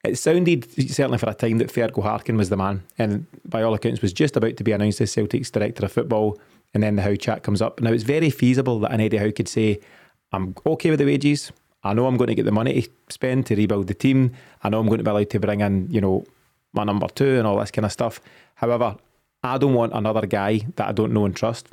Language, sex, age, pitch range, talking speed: English, male, 20-39, 105-125 Hz, 265 wpm